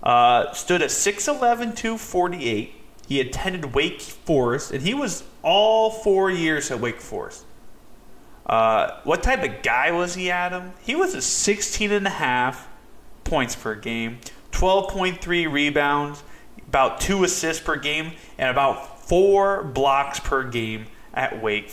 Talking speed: 130 wpm